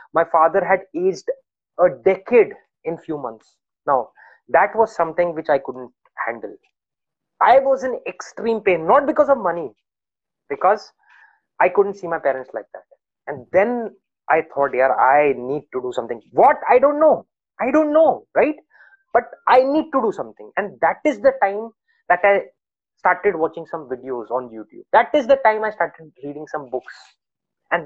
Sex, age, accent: male, 20-39, Indian